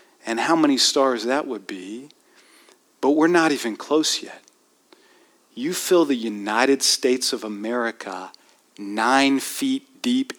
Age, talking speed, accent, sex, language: 40-59, 135 wpm, American, male, English